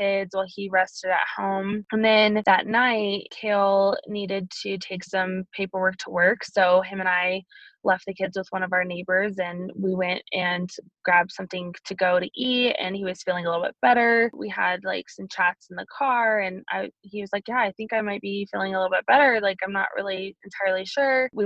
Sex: female